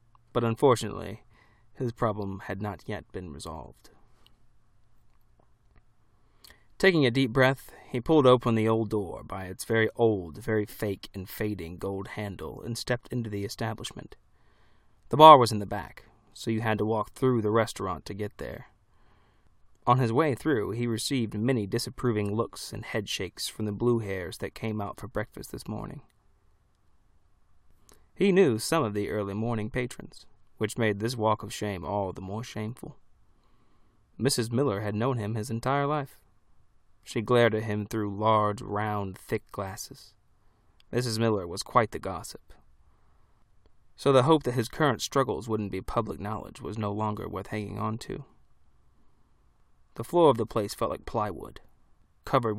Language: English